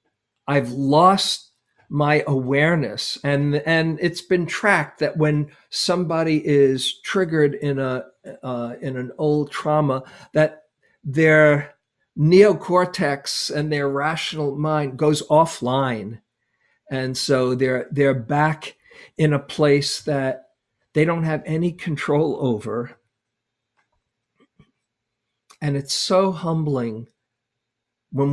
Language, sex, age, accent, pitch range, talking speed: English, male, 50-69, American, 120-150 Hz, 105 wpm